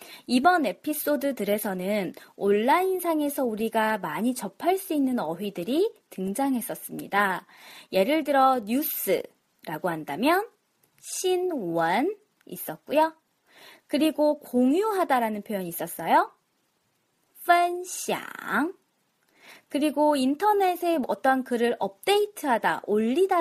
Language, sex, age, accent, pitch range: Korean, female, 20-39, native, 225-355 Hz